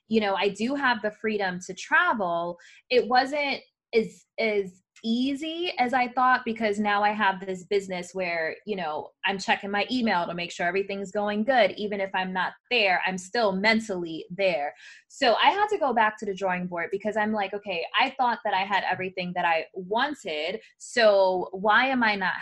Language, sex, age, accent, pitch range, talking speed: English, female, 20-39, American, 190-235 Hz, 195 wpm